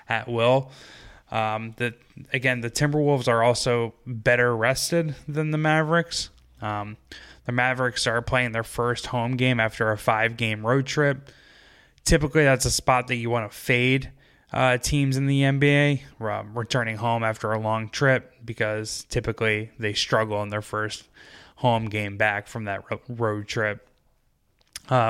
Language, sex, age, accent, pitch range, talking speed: English, male, 20-39, American, 110-130 Hz, 150 wpm